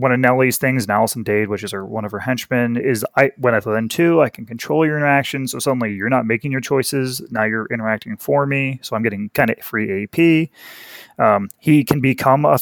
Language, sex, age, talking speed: English, male, 30-49, 235 wpm